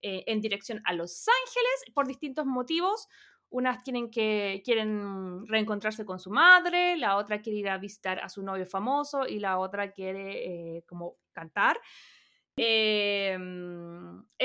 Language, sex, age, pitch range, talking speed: Spanish, female, 20-39, 210-330 Hz, 145 wpm